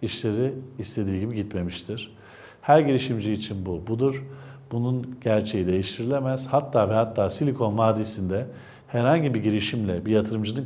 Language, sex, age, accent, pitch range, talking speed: Turkish, male, 50-69, native, 100-130 Hz, 125 wpm